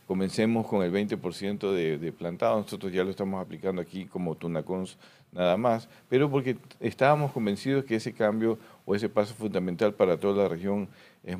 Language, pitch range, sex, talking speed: Spanish, 90-115 Hz, male, 175 wpm